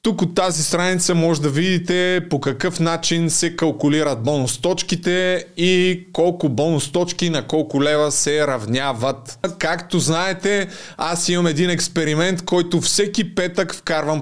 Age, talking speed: 20-39, 140 wpm